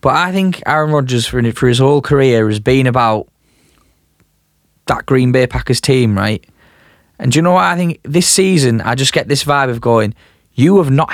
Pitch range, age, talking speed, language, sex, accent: 125-150 Hz, 20-39, 200 wpm, English, male, British